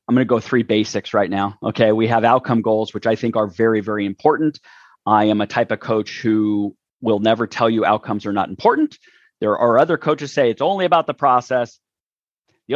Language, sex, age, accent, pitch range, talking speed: English, male, 30-49, American, 110-140 Hz, 215 wpm